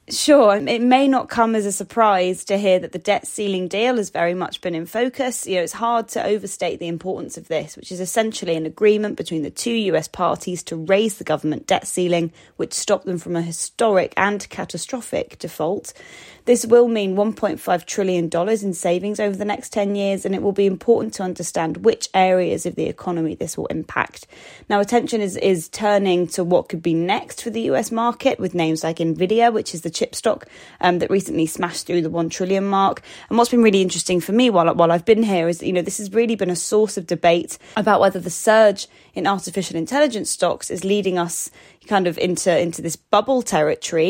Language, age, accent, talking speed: English, 20-39, British, 215 wpm